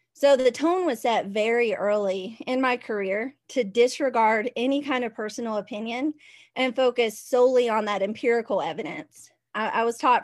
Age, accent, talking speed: 20-39, American, 165 wpm